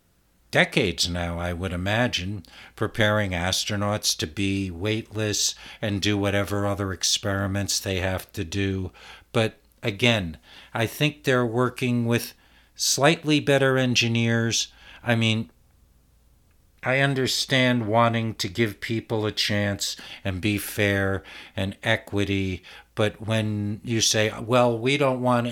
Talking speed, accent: 120 wpm, American